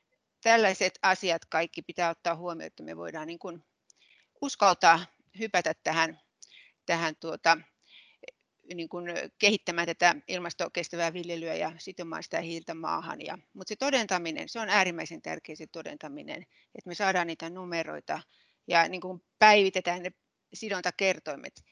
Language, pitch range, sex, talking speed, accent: Finnish, 175-220 Hz, female, 135 wpm, native